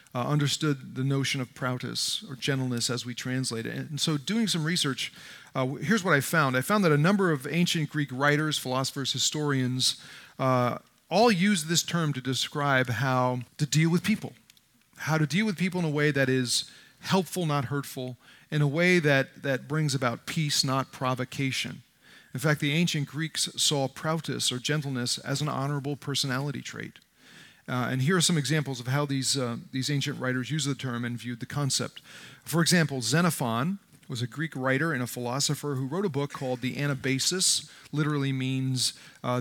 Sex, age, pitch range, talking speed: male, 40-59, 130-160 Hz, 185 wpm